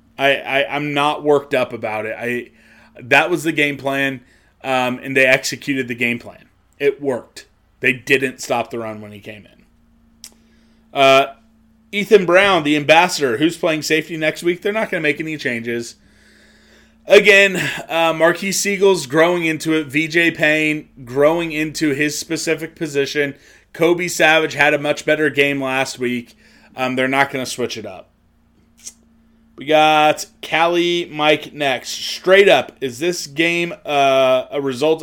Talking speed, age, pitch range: 160 wpm, 30-49, 125-160 Hz